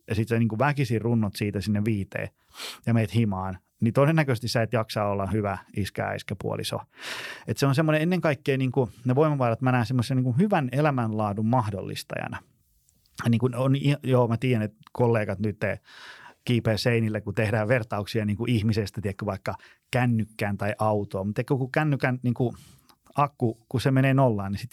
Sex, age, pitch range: male, 30-49, 105-130 Hz